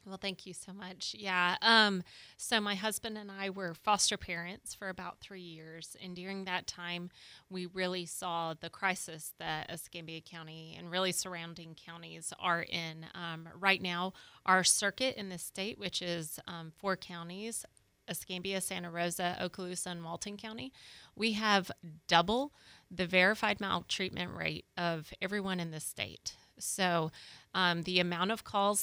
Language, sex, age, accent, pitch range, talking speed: English, female, 30-49, American, 170-195 Hz, 155 wpm